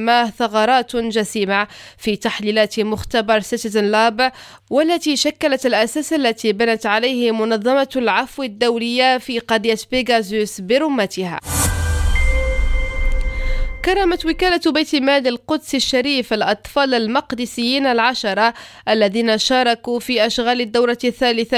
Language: French